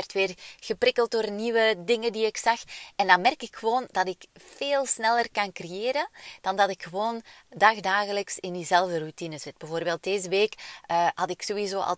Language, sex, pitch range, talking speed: Dutch, female, 175-210 Hz, 180 wpm